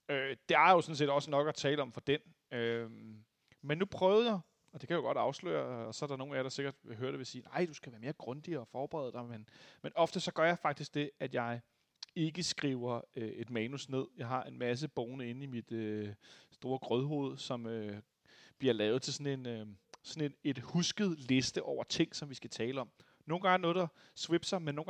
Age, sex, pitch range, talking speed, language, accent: 30-49, male, 125-160 Hz, 245 wpm, Danish, native